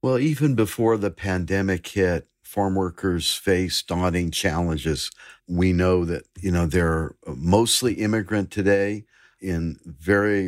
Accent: American